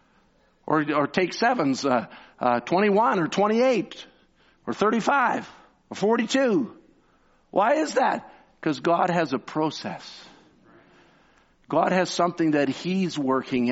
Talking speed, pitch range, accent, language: 120 wpm, 125-175 Hz, American, English